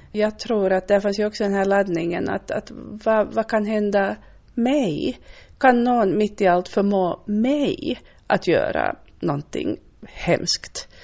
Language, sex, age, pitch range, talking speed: Swedish, female, 30-49, 180-215 Hz, 150 wpm